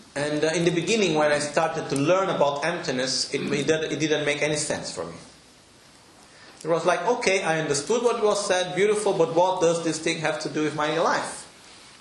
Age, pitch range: 30-49, 135-180 Hz